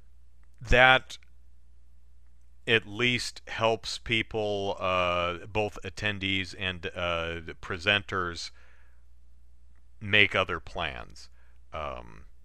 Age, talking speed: 40-59, 70 wpm